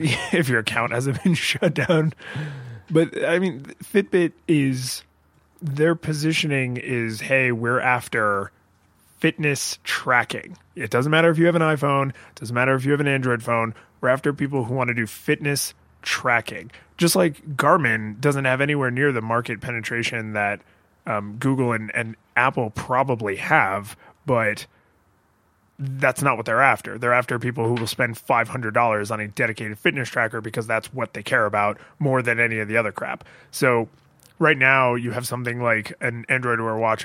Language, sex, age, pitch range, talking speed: English, male, 30-49, 115-145 Hz, 170 wpm